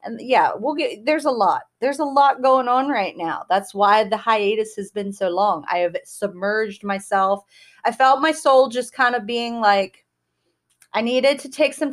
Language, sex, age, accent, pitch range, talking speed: English, female, 30-49, American, 195-245 Hz, 200 wpm